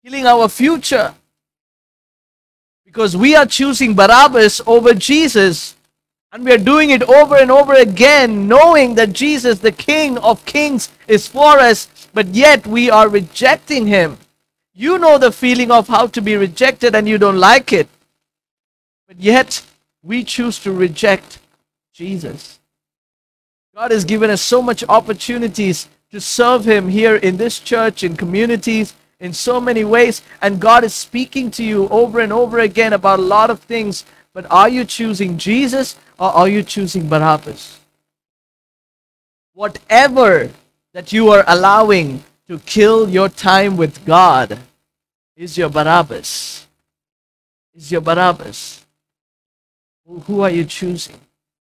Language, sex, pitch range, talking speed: English, male, 180-240 Hz, 140 wpm